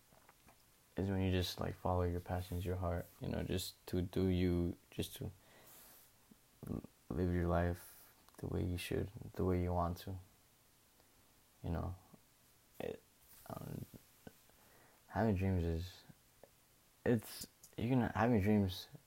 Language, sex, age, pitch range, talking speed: English, male, 20-39, 90-105 Hz, 130 wpm